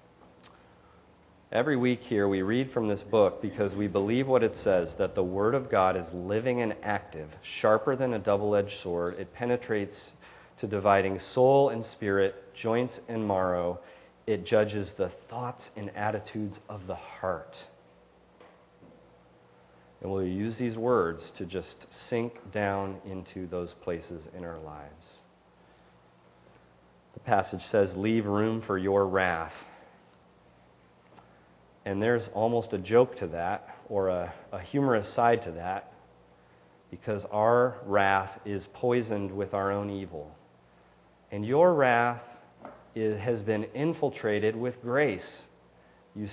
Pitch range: 90-120 Hz